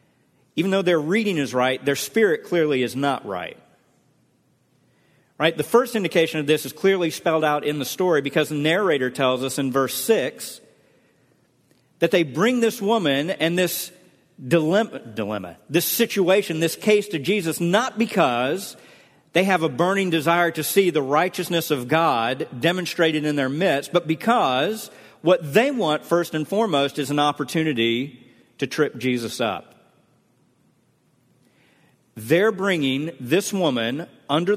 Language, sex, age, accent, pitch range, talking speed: English, male, 50-69, American, 140-185 Hz, 150 wpm